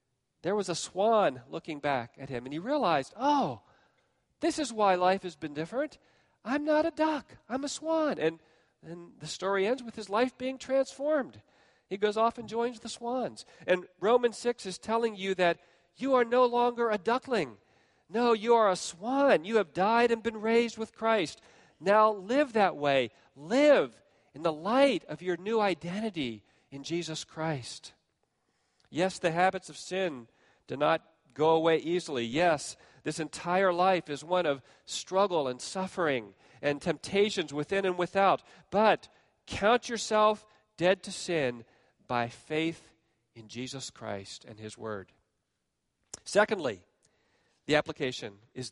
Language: English